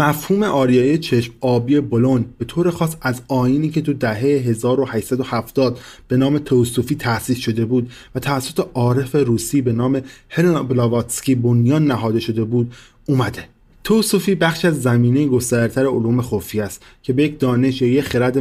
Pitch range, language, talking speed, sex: 115-135 Hz, Persian, 145 wpm, male